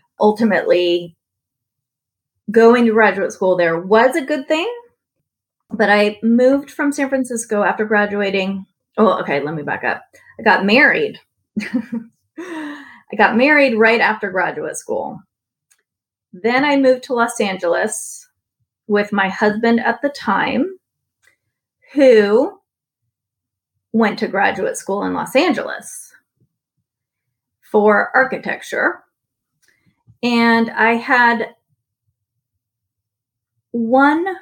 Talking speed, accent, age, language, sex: 105 wpm, American, 30-49, English, female